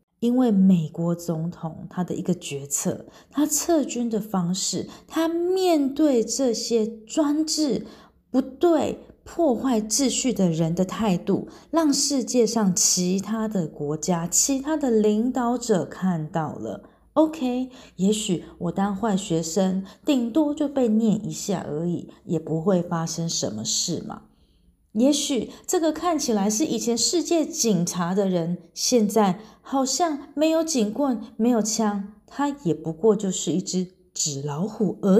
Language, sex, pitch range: Chinese, female, 180-270 Hz